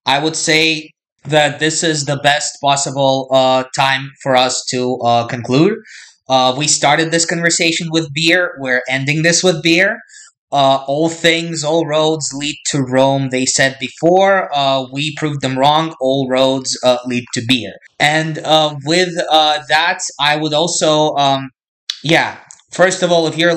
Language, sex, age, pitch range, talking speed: Turkish, male, 20-39, 130-160 Hz, 165 wpm